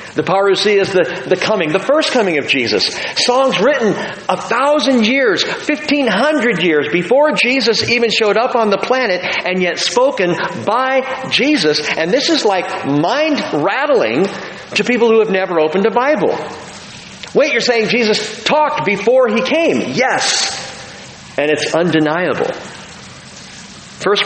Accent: American